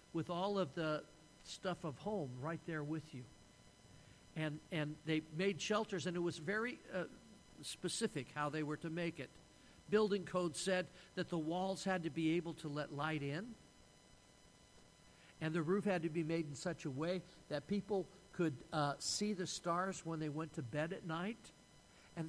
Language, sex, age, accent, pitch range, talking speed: English, male, 50-69, American, 150-190 Hz, 185 wpm